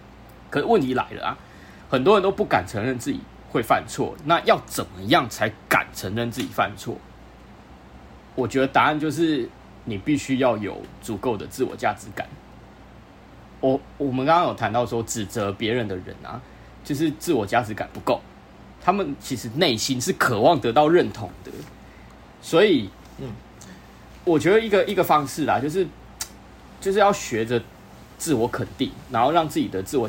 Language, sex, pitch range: Chinese, male, 105-145 Hz